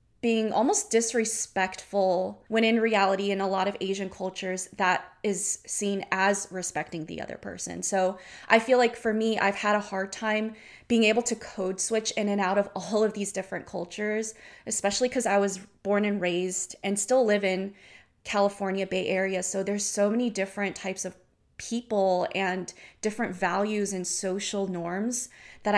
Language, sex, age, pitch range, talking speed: English, female, 20-39, 190-225 Hz, 170 wpm